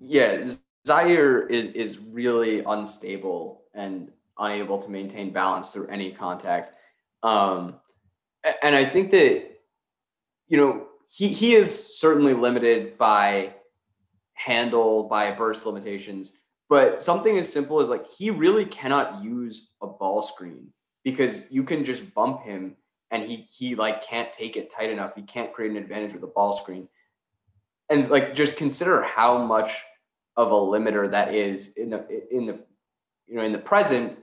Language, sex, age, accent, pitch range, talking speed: English, male, 20-39, American, 100-125 Hz, 155 wpm